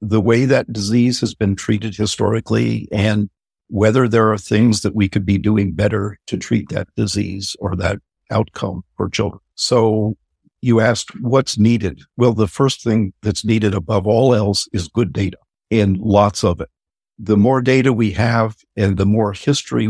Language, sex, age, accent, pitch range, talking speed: English, male, 60-79, American, 95-110 Hz, 175 wpm